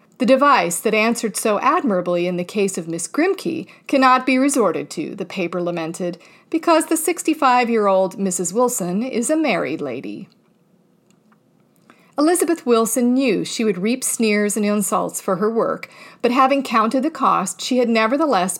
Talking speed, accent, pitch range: 155 wpm, American, 195-260 Hz